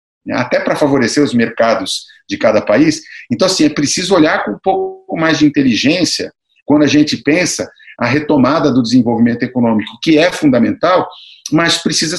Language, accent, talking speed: Portuguese, Brazilian, 160 wpm